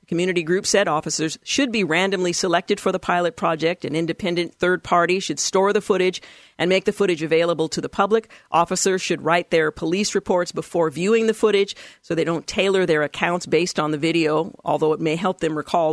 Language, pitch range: English, 160-195 Hz